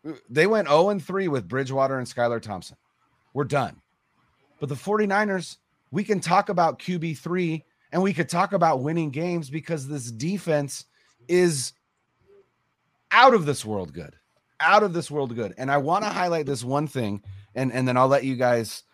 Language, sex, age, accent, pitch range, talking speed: English, male, 30-49, American, 105-155 Hz, 180 wpm